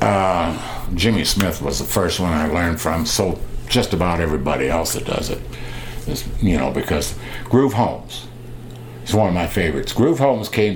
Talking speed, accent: 175 wpm, American